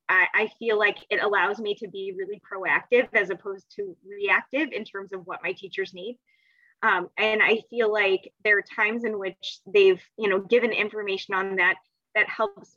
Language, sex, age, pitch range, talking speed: English, female, 20-39, 190-220 Hz, 190 wpm